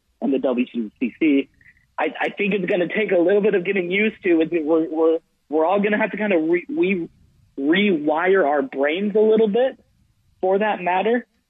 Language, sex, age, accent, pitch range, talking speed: English, male, 30-49, American, 140-190 Hz, 185 wpm